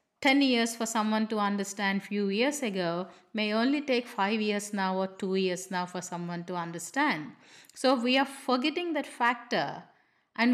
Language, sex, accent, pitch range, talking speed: English, female, Indian, 195-245 Hz, 170 wpm